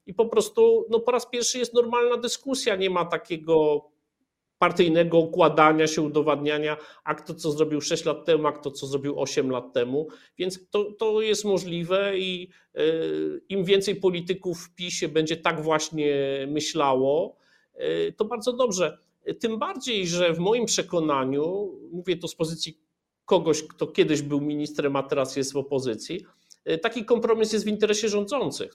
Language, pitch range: Polish, 150-205 Hz